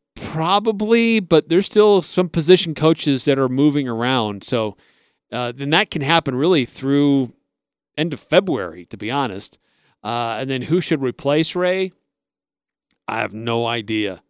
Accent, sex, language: American, male, English